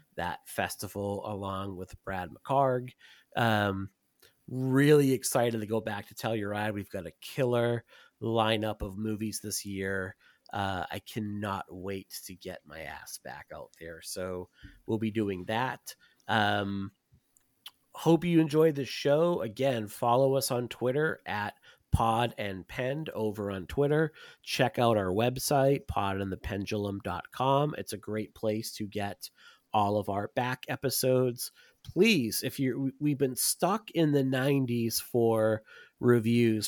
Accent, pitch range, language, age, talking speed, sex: American, 105-130 Hz, English, 30-49, 140 wpm, male